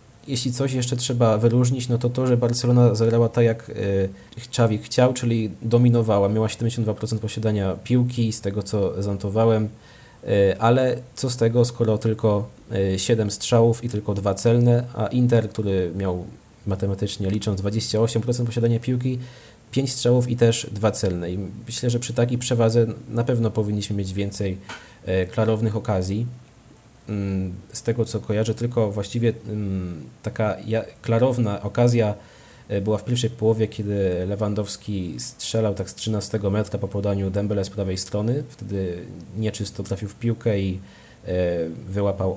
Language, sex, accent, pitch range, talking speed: Polish, male, native, 100-120 Hz, 140 wpm